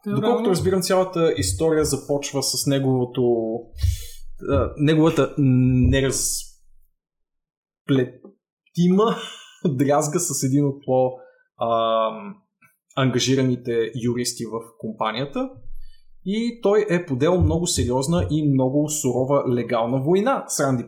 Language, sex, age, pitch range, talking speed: Bulgarian, male, 20-39, 120-165 Hz, 85 wpm